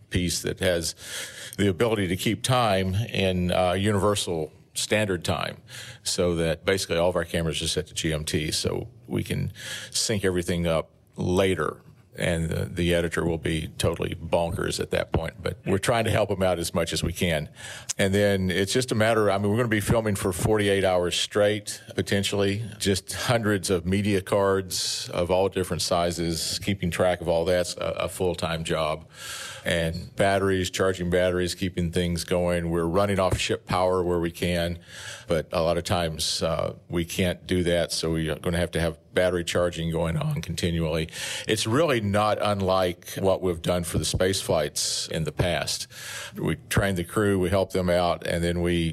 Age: 50-69